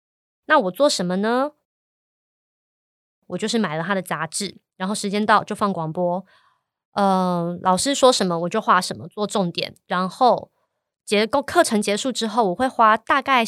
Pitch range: 180-225 Hz